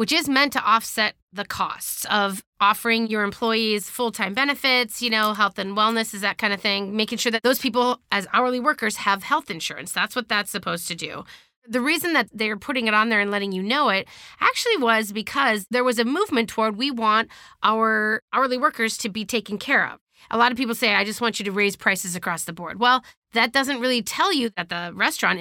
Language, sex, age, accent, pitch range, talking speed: English, female, 30-49, American, 195-250 Hz, 225 wpm